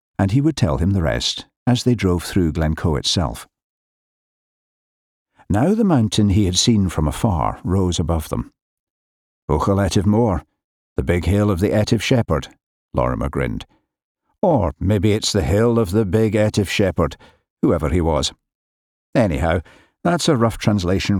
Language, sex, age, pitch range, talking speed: English, male, 60-79, 80-110 Hz, 155 wpm